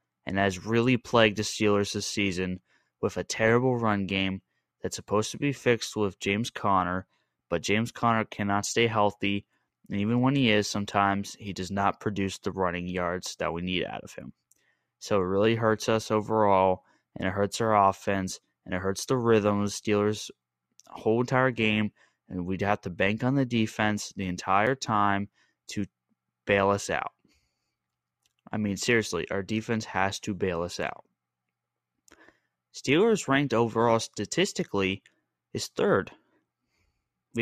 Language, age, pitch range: English, 20-39, 95-115 Hz